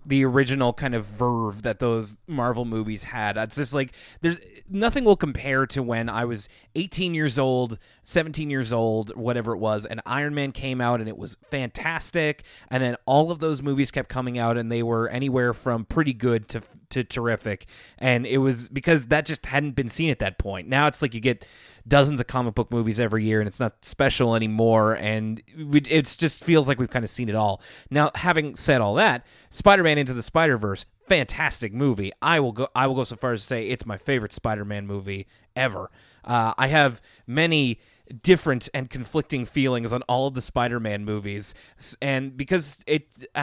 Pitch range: 110-145 Hz